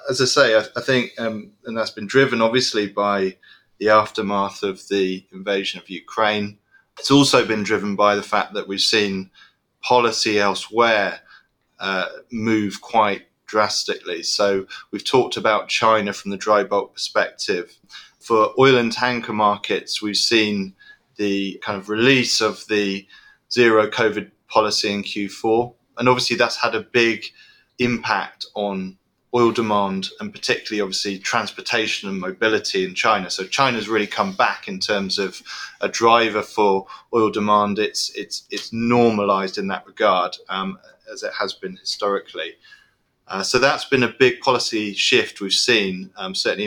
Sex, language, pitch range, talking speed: male, English, 100-125 Hz, 155 wpm